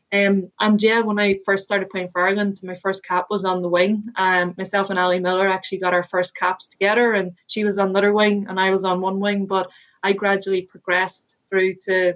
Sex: female